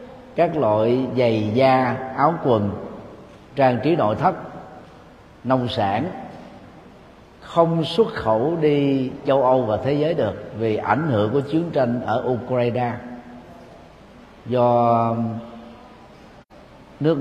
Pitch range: 110-145 Hz